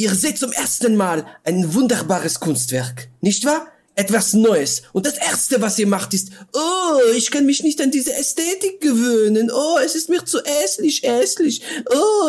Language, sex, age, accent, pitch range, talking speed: German, male, 40-59, German, 190-260 Hz, 175 wpm